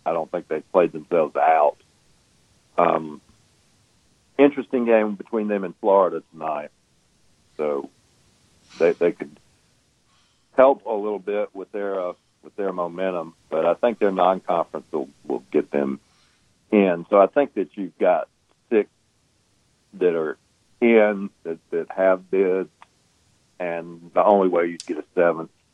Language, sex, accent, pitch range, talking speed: English, male, American, 85-105 Hz, 145 wpm